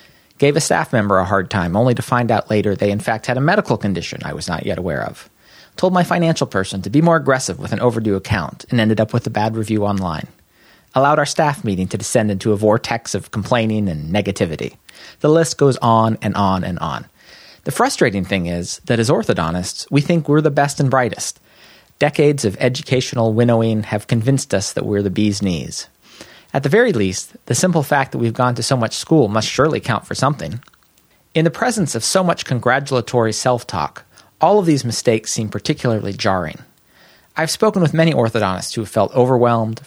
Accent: American